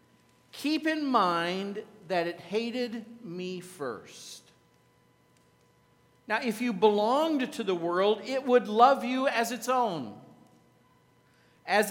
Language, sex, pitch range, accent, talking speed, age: English, male, 175-245 Hz, American, 115 wpm, 50-69